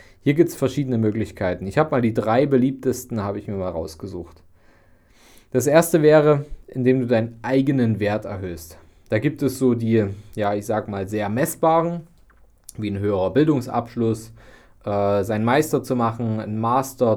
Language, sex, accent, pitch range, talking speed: German, male, German, 105-145 Hz, 165 wpm